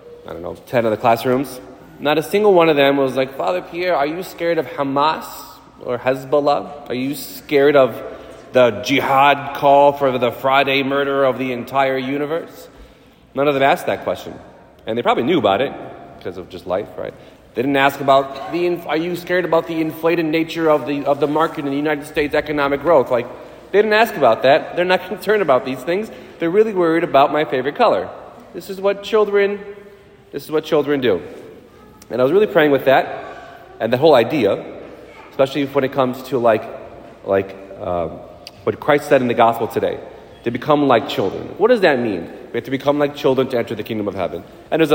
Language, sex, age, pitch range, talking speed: English, male, 30-49, 130-165 Hz, 205 wpm